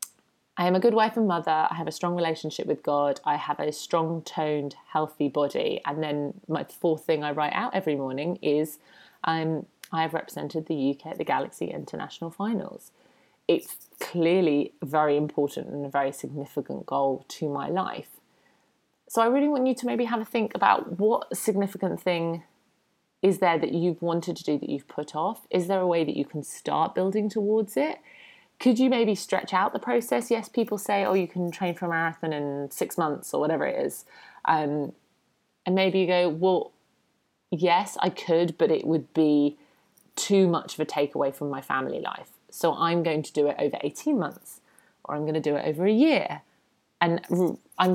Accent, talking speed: British, 195 wpm